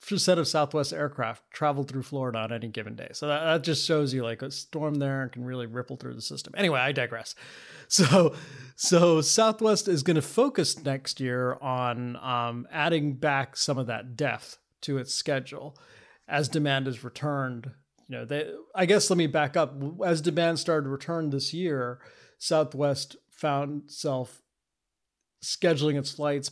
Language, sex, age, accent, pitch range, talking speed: English, male, 30-49, American, 130-165 Hz, 175 wpm